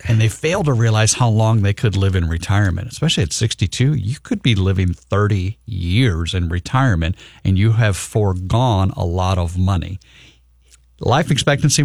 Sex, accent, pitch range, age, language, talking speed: male, American, 95-120 Hz, 50-69, English, 165 wpm